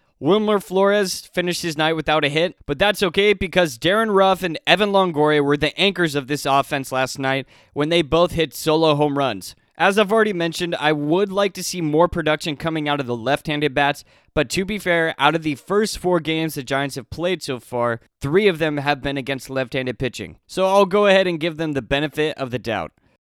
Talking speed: 220 wpm